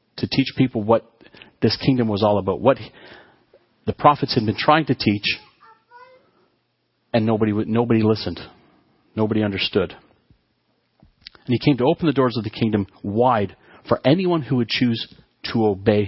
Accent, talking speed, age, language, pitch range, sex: American, 155 wpm, 40-59, English, 100-125 Hz, male